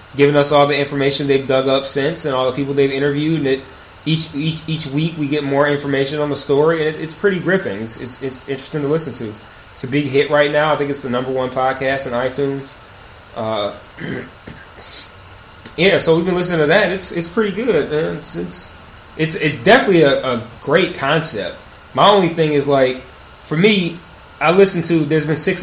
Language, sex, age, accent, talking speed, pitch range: English, male, 20-39, American, 215 wpm, 125-160 Hz